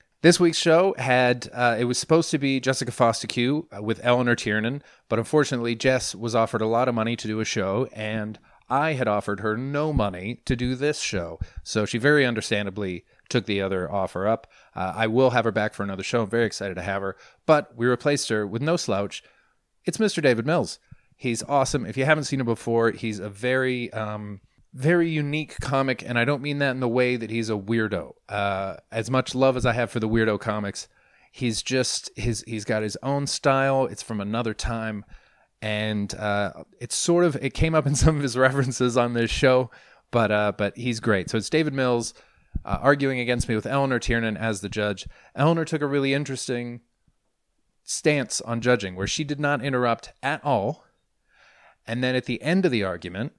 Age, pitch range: 30-49, 110-135 Hz